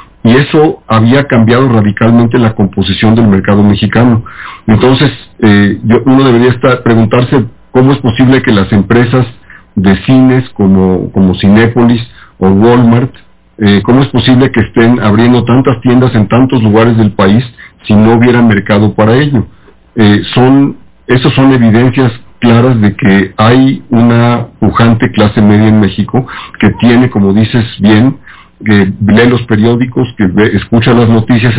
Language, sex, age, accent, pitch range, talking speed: Spanish, male, 50-69, Mexican, 105-125 Hz, 150 wpm